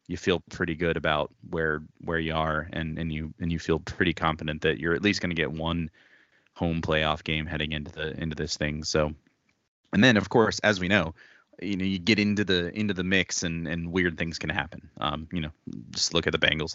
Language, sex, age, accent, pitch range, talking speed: English, male, 30-49, American, 80-95 Hz, 235 wpm